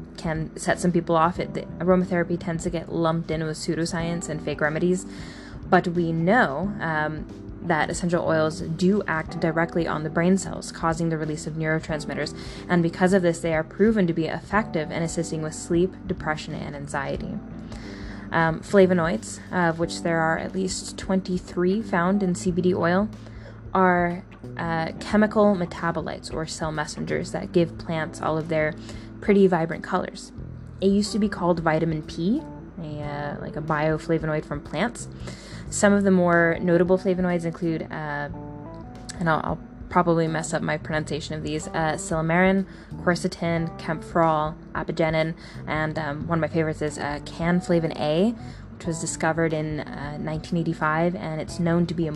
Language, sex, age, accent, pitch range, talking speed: English, female, 10-29, American, 155-180 Hz, 160 wpm